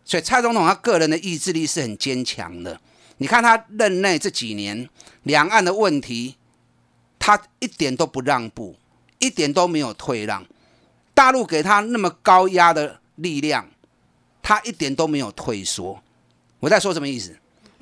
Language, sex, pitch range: Chinese, male, 130-200 Hz